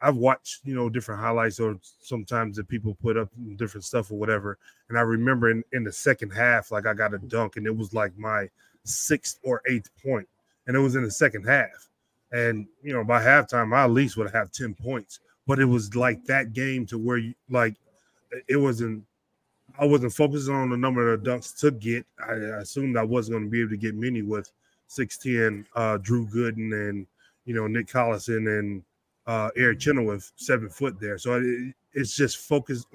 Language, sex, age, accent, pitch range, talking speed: English, male, 20-39, American, 110-130 Hz, 210 wpm